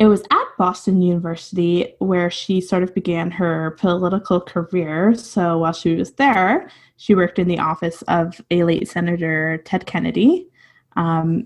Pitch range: 165-195 Hz